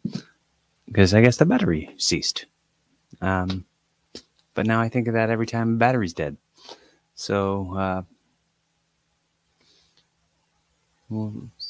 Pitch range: 85-105 Hz